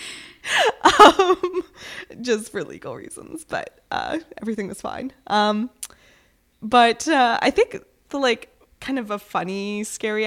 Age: 20-39